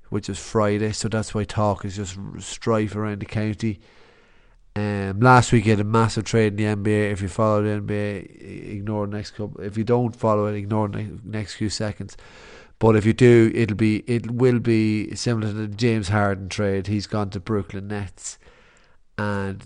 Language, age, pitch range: English, 30-49, 100-110 Hz